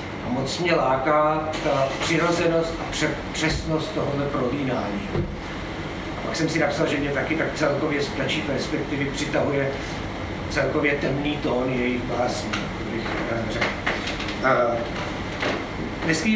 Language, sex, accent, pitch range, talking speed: Czech, male, native, 140-165 Hz, 100 wpm